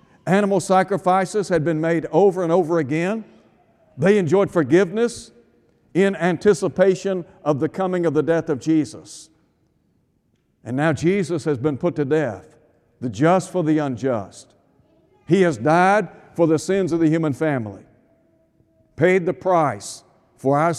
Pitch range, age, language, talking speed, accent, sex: 145-185 Hz, 60-79, English, 145 wpm, American, male